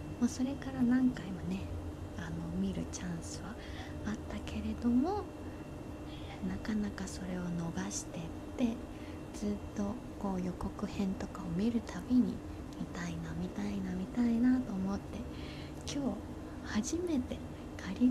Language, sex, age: Japanese, female, 20-39